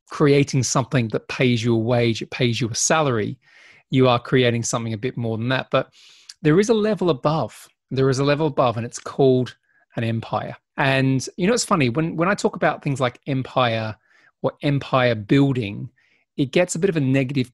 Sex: male